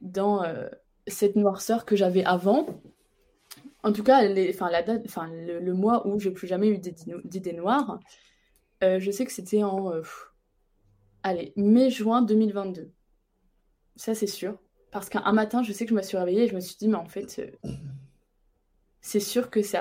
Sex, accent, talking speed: female, French, 185 wpm